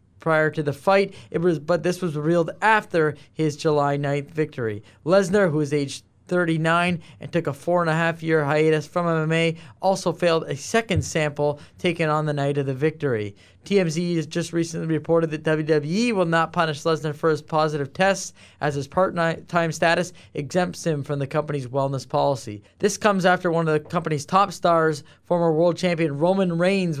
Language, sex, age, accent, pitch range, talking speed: English, male, 20-39, American, 145-170 Hz, 185 wpm